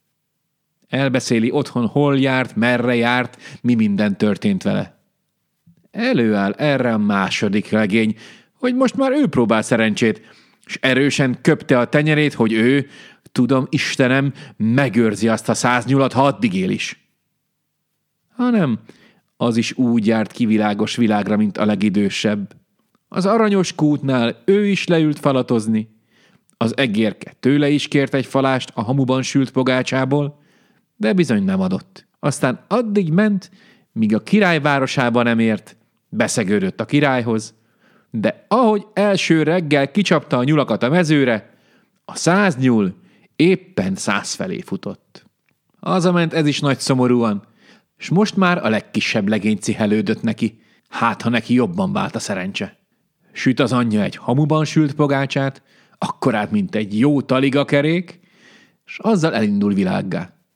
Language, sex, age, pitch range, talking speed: Hungarian, male, 30-49, 115-185 Hz, 135 wpm